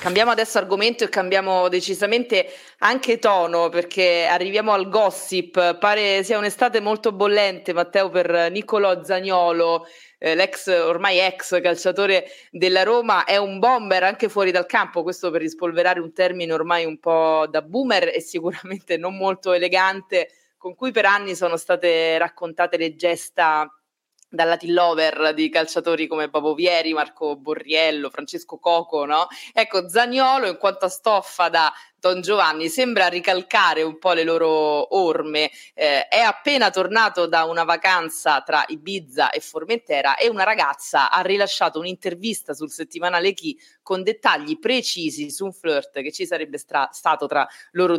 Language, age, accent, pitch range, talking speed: Italian, 20-39, native, 165-205 Hz, 150 wpm